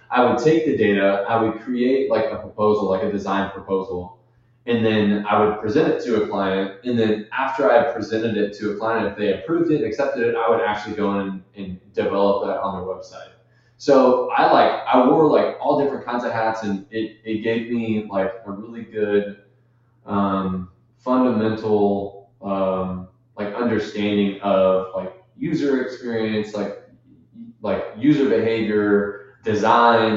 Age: 20-39